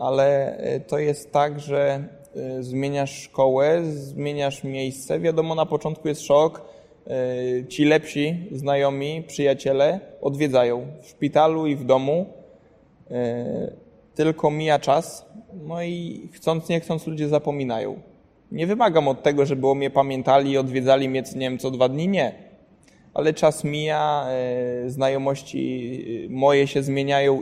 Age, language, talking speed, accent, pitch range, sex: 20-39, Polish, 125 wpm, native, 135-155 Hz, male